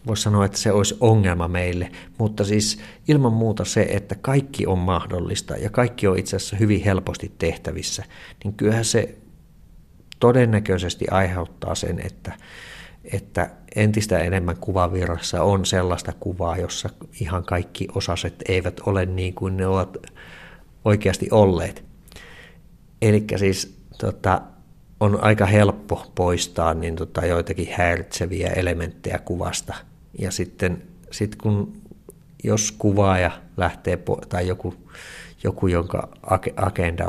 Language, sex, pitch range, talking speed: Finnish, male, 85-100 Hz, 120 wpm